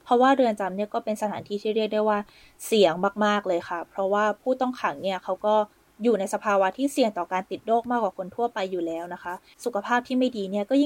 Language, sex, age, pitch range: Thai, female, 20-39, 190-235 Hz